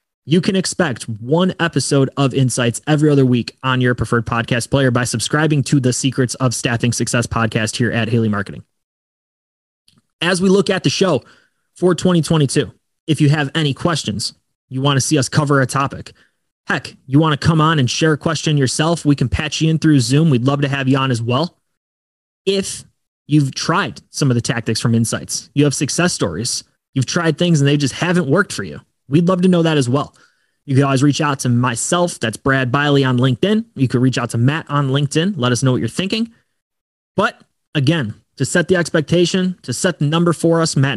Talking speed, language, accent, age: 210 wpm, English, American, 20-39